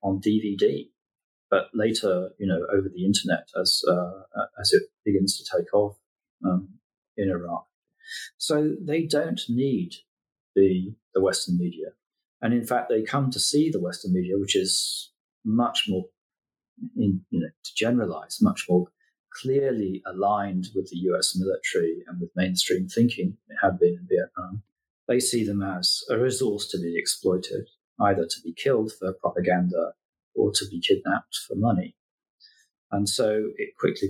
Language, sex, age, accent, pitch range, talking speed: English, male, 40-59, British, 90-135 Hz, 155 wpm